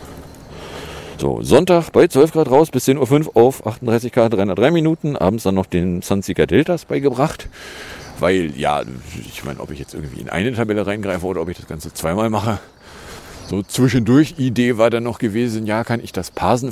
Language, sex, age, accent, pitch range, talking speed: German, male, 50-69, German, 90-120 Hz, 185 wpm